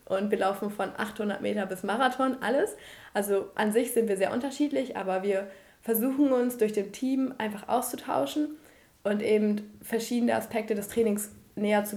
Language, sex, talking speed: German, female, 165 wpm